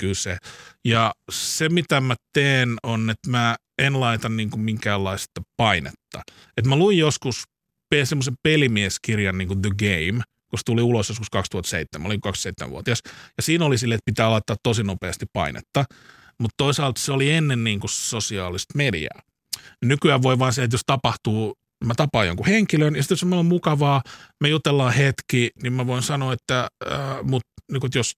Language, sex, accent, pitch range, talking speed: Finnish, male, native, 110-145 Hz, 165 wpm